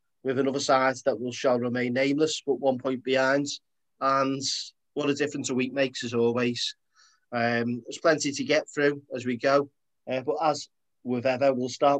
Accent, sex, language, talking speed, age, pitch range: British, male, English, 185 wpm, 30-49, 120-140 Hz